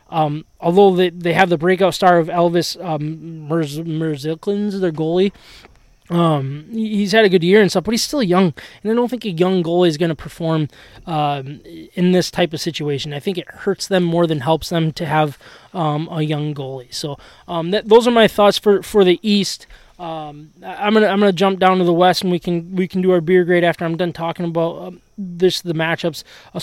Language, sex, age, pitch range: English, male, 20-39, 160-195 Hz